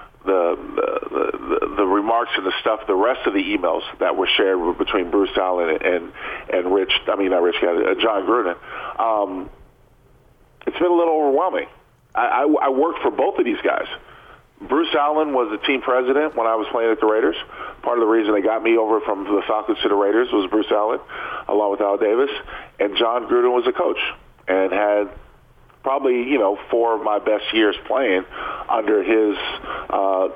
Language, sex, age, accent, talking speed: English, male, 40-59, American, 200 wpm